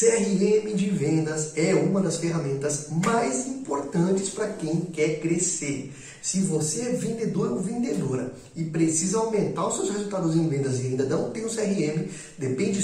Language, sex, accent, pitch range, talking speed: Portuguese, male, Brazilian, 150-195 Hz, 165 wpm